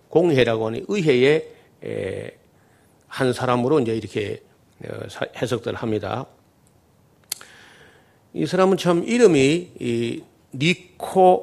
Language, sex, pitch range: Korean, male, 120-185 Hz